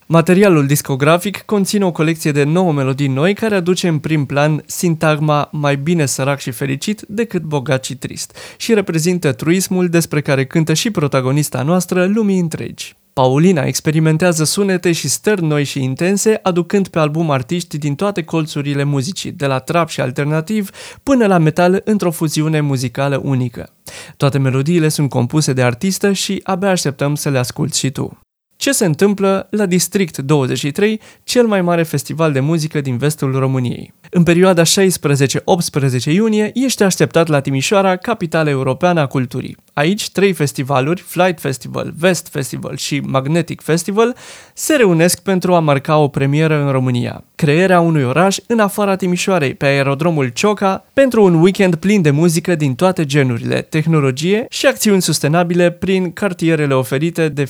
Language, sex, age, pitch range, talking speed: Romanian, male, 20-39, 145-190 Hz, 155 wpm